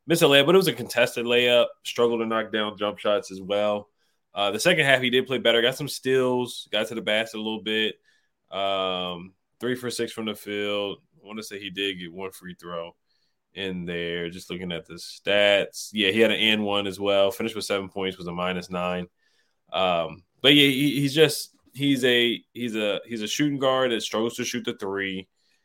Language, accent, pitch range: English, American, 95-115 Hz